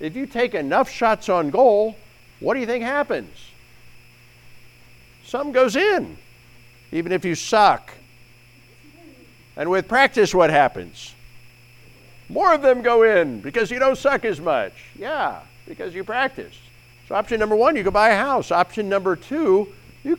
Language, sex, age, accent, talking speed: English, male, 50-69, American, 155 wpm